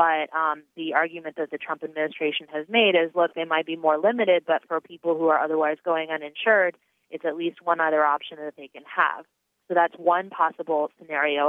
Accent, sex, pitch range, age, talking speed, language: American, female, 150-180 Hz, 30-49, 210 wpm, English